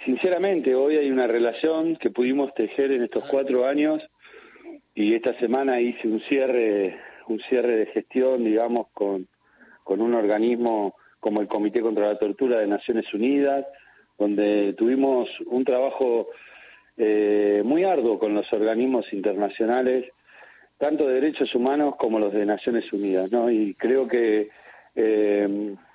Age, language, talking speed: 40-59, Spanish, 140 wpm